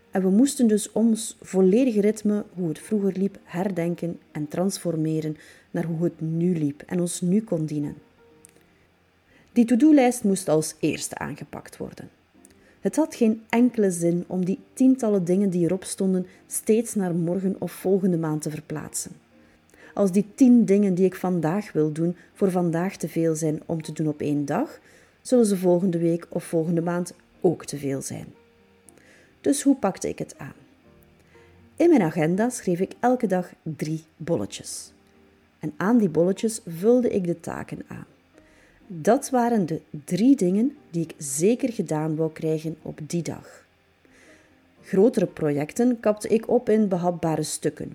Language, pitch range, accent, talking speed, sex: Dutch, 160-215 Hz, Dutch, 160 wpm, female